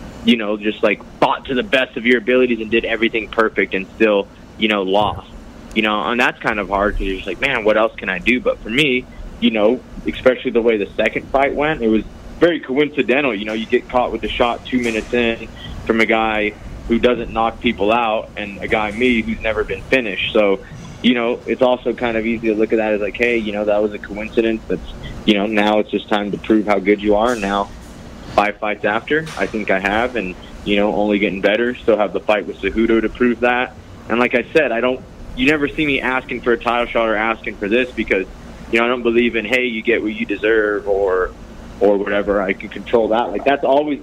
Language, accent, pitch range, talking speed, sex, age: English, American, 105-120 Hz, 245 wpm, male, 20-39